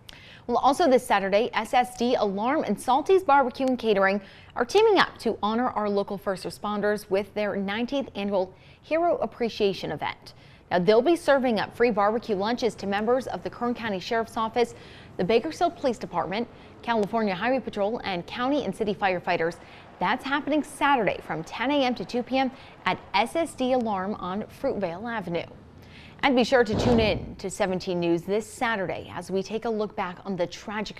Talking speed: 175 wpm